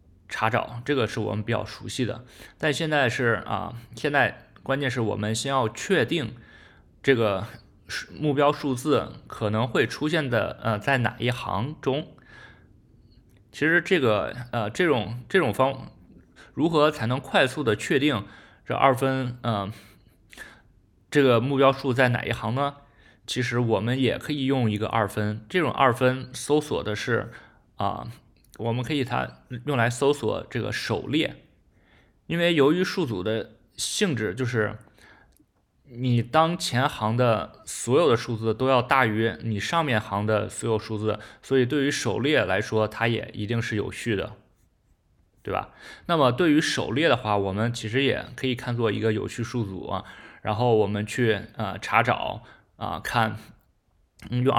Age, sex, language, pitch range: 20-39, male, Chinese, 110-135 Hz